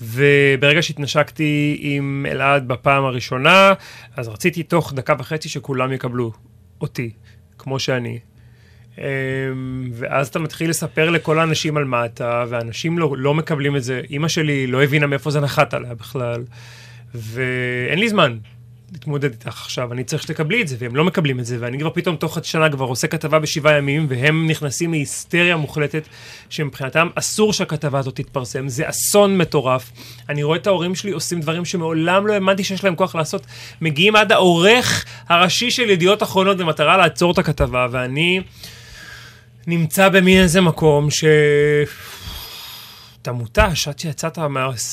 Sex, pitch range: male, 130-165 Hz